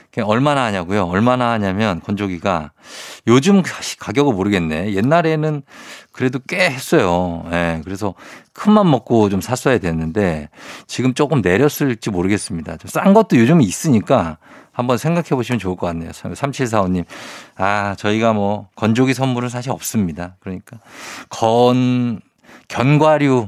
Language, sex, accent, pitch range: Korean, male, native, 100-145 Hz